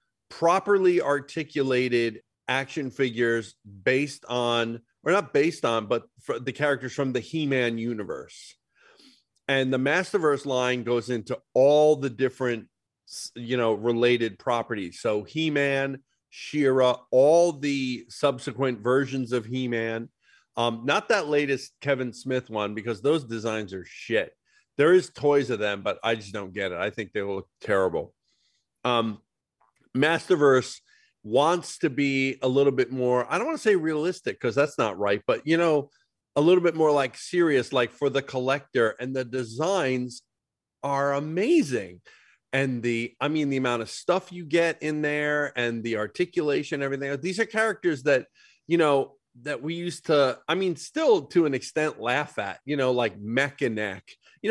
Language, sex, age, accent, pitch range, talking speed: English, male, 40-59, American, 120-150 Hz, 160 wpm